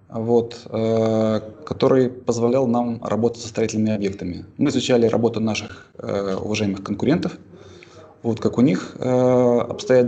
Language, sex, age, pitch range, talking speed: Russian, male, 20-39, 110-130 Hz, 130 wpm